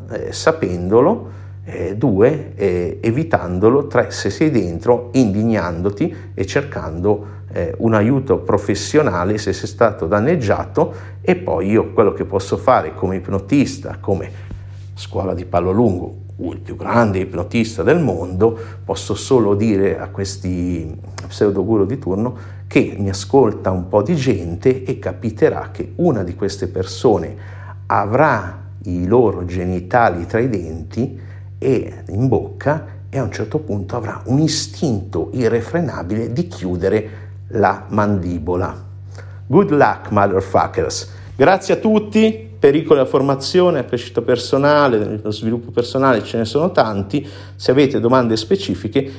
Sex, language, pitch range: male, Italian, 95-115 Hz